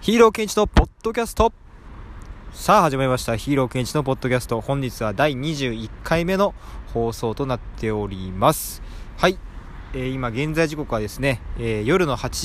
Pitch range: 100-155 Hz